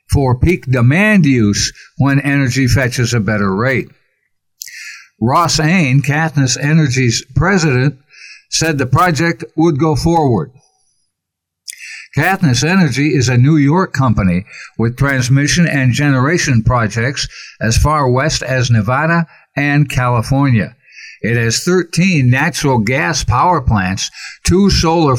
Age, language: 60-79, English